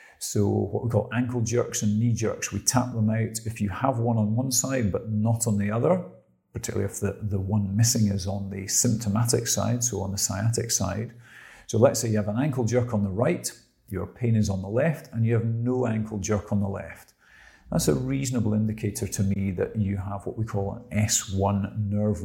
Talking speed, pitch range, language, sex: 220 wpm, 100-120 Hz, English, male